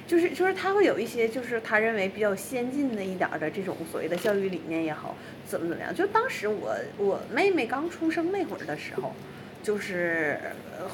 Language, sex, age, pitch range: Chinese, female, 20-39, 200-325 Hz